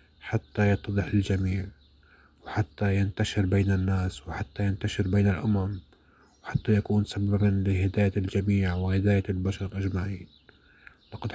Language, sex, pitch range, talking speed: Arabic, male, 95-105 Hz, 105 wpm